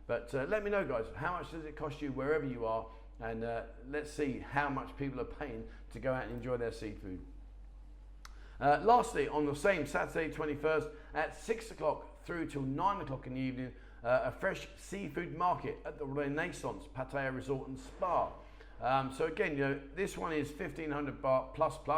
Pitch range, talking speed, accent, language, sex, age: 130-155 Hz, 195 wpm, British, English, male, 50-69